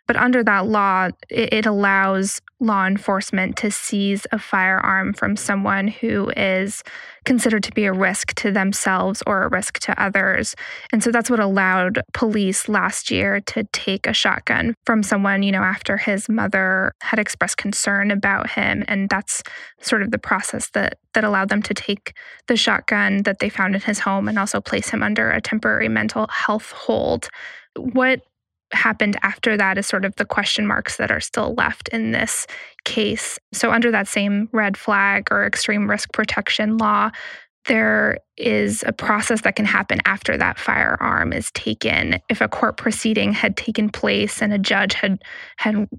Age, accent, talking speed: 10-29, American, 175 wpm